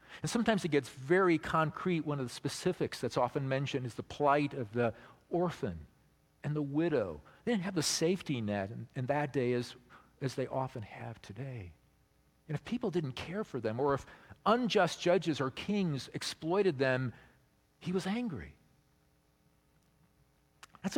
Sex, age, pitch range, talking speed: male, 50-69, 115-160 Hz, 165 wpm